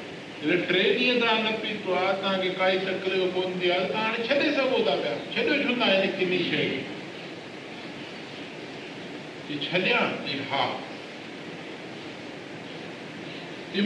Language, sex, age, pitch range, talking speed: Hindi, male, 50-69, 180-215 Hz, 115 wpm